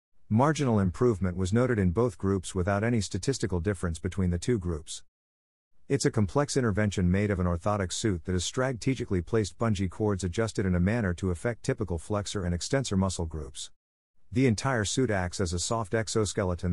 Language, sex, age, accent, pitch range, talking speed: English, male, 50-69, American, 90-115 Hz, 180 wpm